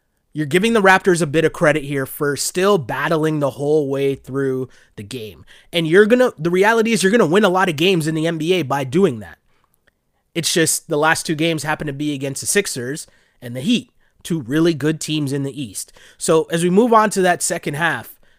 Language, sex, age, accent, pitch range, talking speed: English, male, 30-49, American, 145-185 Hz, 230 wpm